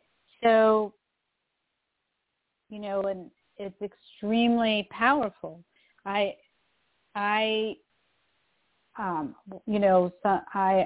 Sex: female